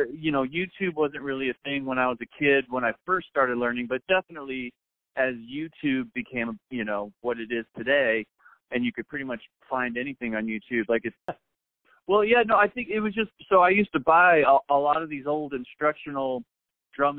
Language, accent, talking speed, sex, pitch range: English, American, 205 wpm, male, 120-150 Hz